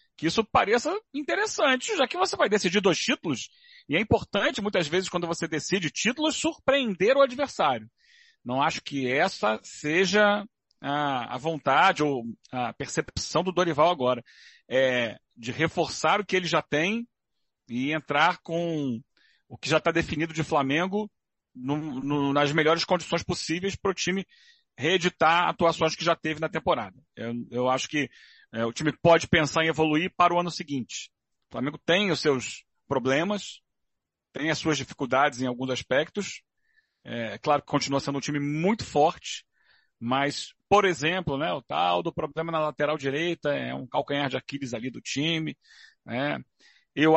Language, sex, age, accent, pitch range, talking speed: Portuguese, male, 40-59, Brazilian, 145-190 Hz, 160 wpm